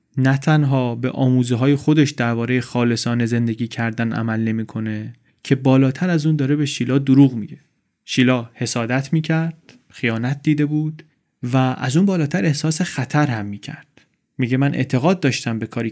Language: Persian